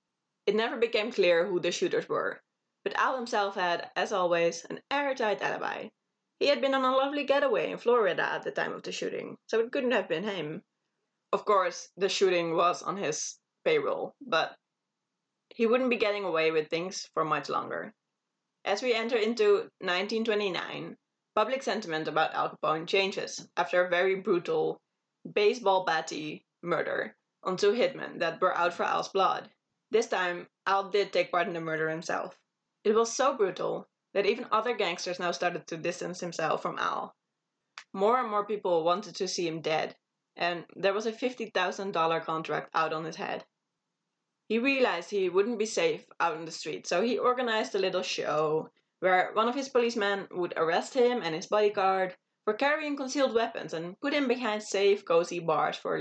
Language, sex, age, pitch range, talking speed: English, female, 10-29, 175-255 Hz, 180 wpm